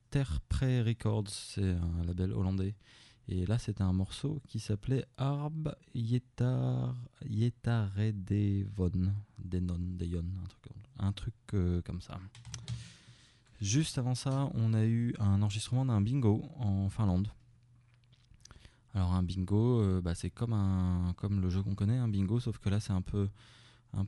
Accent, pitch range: French, 95-120 Hz